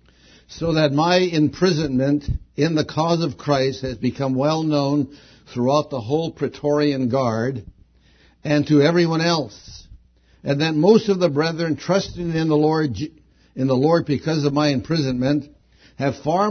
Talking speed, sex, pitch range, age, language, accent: 150 wpm, male, 130-165 Hz, 70-89, English, American